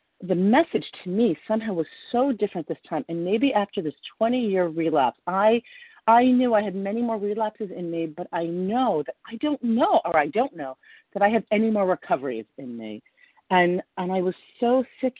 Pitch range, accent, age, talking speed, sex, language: 155-215 Hz, American, 40-59, 200 wpm, female, English